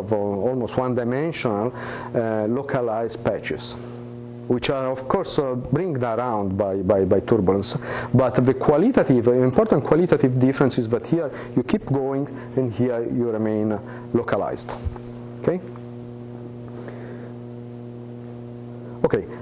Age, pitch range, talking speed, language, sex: 50-69, 115-140 Hz, 115 wpm, English, male